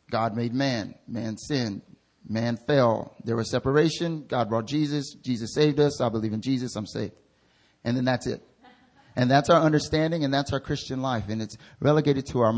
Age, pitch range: 30-49, 115-145 Hz